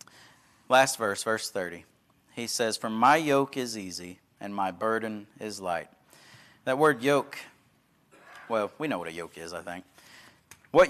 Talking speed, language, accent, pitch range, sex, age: 160 wpm, English, American, 125-155 Hz, male, 30-49